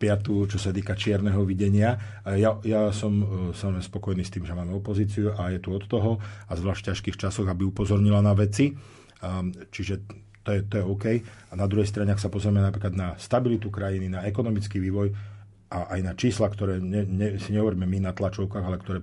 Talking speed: 200 wpm